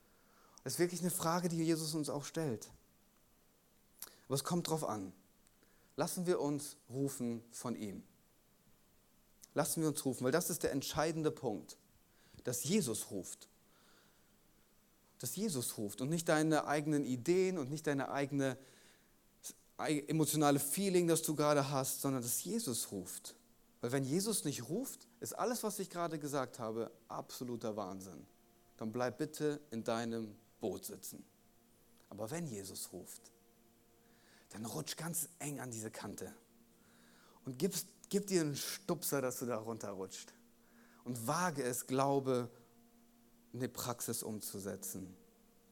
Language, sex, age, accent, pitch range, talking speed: German, male, 30-49, German, 115-160 Hz, 140 wpm